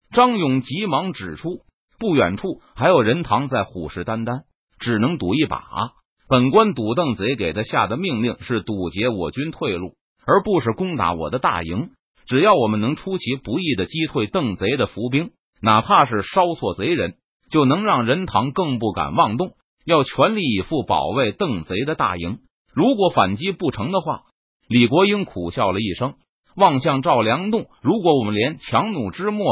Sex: male